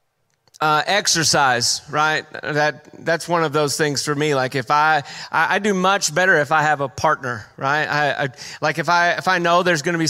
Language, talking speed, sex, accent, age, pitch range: English, 220 wpm, male, American, 30-49, 150-175 Hz